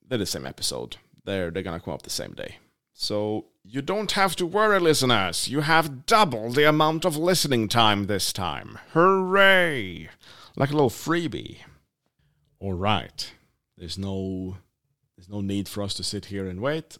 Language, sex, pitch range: English, male, 95-130 Hz